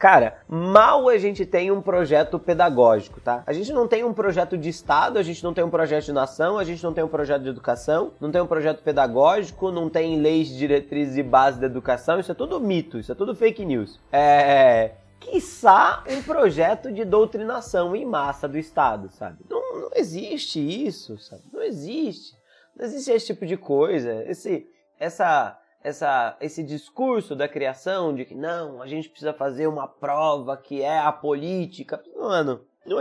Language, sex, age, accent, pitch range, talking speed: Portuguese, male, 20-39, Brazilian, 145-200 Hz, 185 wpm